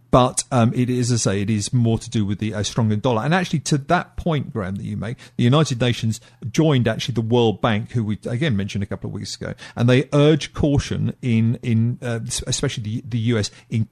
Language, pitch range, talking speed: English, 110-130 Hz, 235 wpm